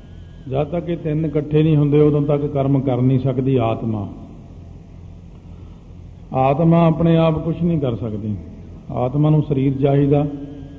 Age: 50-69